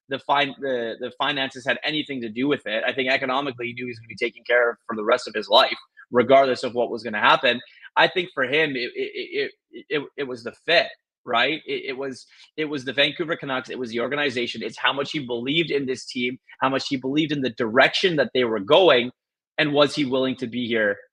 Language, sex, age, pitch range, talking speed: English, male, 30-49, 125-170 Hz, 250 wpm